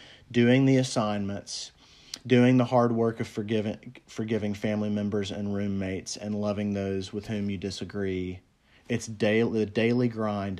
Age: 30-49